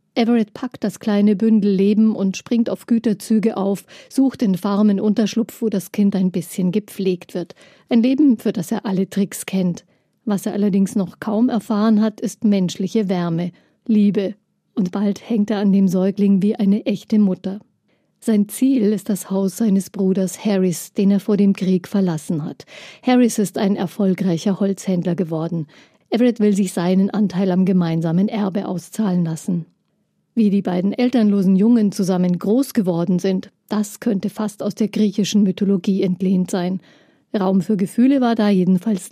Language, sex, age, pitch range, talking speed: German, female, 50-69, 190-220 Hz, 165 wpm